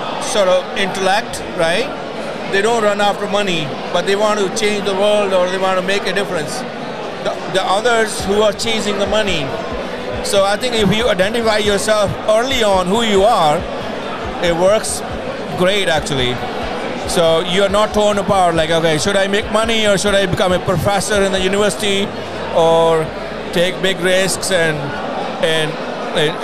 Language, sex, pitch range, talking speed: Spanish, male, 180-210 Hz, 170 wpm